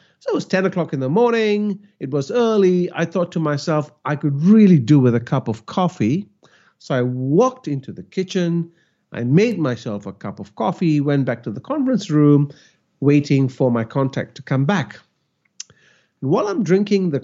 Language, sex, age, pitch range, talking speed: English, male, 50-69, 130-195 Hz, 190 wpm